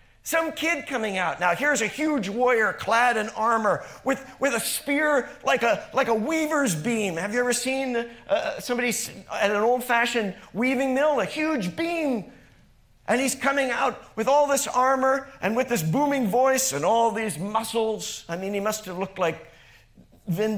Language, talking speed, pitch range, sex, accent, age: English, 180 wpm, 160-235 Hz, male, American, 50-69